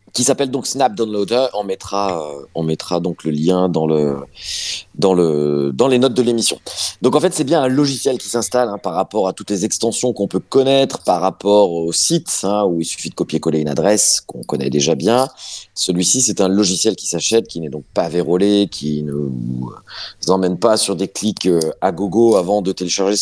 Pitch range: 85-120 Hz